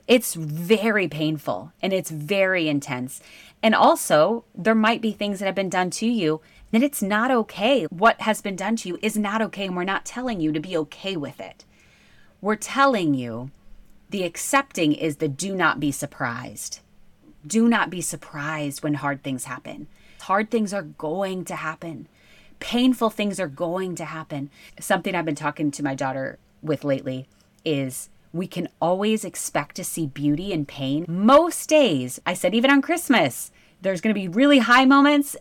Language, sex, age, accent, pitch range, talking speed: English, female, 30-49, American, 155-225 Hz, 180 wpm